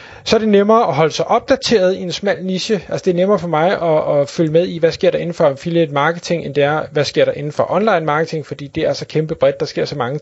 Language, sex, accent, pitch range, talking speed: Danish, male, native, 150-185 Hz, 295 wpm